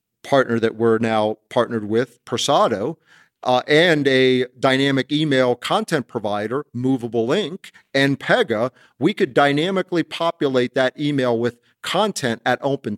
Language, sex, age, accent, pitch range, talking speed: English, male, 50-69, American, 120-145 Hz, 130 wpm